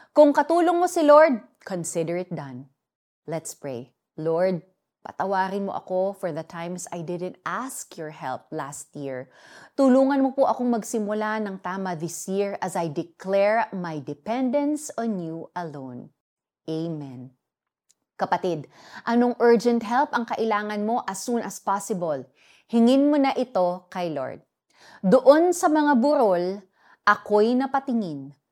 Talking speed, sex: 135 wpm, female